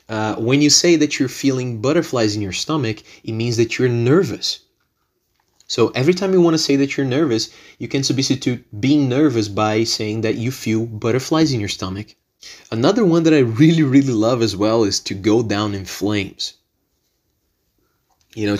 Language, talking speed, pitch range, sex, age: English, 185 wpm, 110-140 Hz, male, 20-39